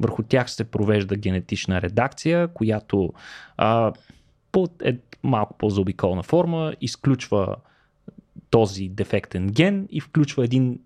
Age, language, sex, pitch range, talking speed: 20-39, Bulgarian, male, 100-145 Hz, 115 wpm